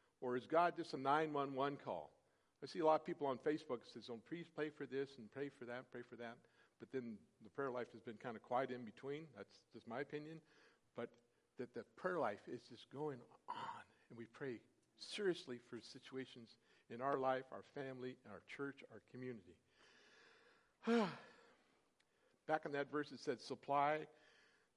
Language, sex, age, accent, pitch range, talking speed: English, male, 50-69, American, 120-150 Hz, 185 wpm